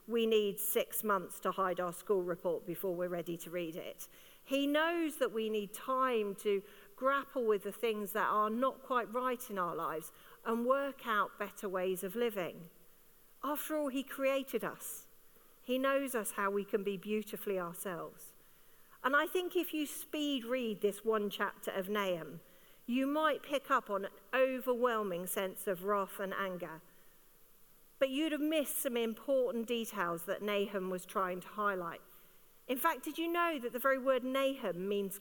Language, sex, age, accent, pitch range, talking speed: English, female, 40-59, British, 195-260 Hz, 175 wpm